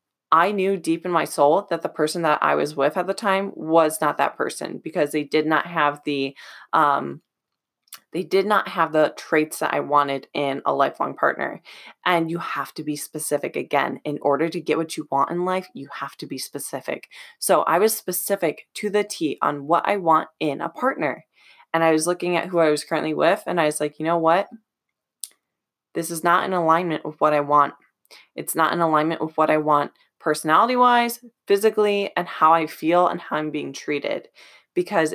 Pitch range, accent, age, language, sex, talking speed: 155-180 Hz, American, 20-39, English, female, 205 wpm